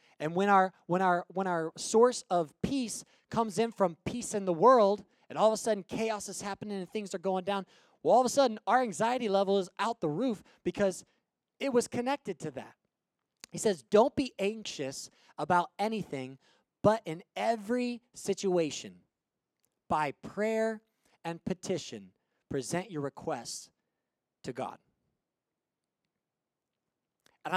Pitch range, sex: 150-210 Hz, male